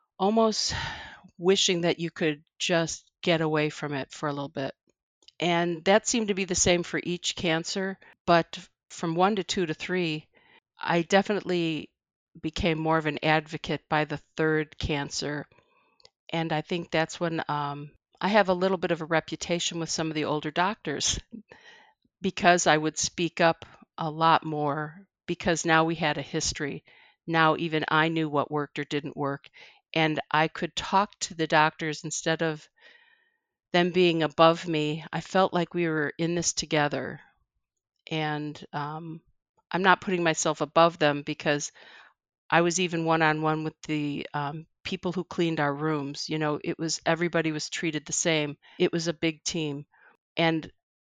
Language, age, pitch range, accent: English, 50-69, 155-175 Hz, American